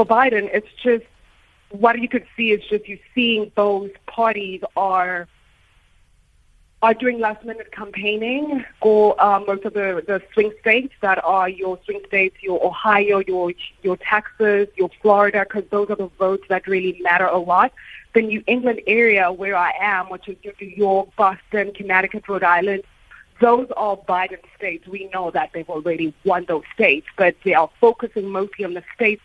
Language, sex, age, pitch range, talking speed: English, female, 30-49, 185-210 Hz, 170 wpm